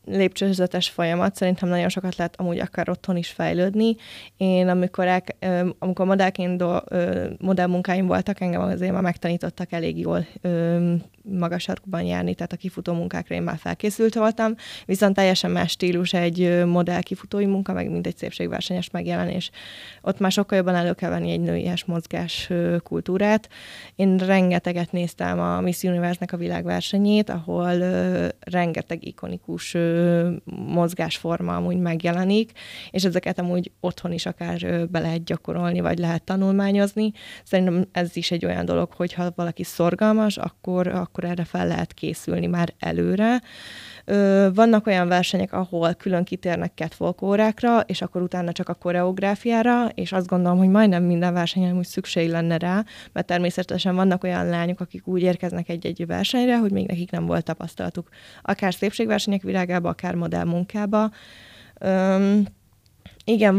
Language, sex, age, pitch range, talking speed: Hungarian, female, 20-39, 170-190 Hz, 140 wpm